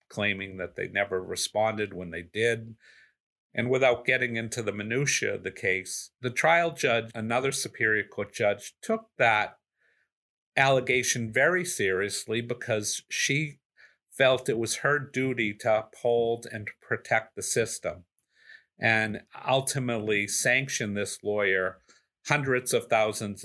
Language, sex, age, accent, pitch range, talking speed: English, male, 50-69, American, 105-130 Hz, 130 wpm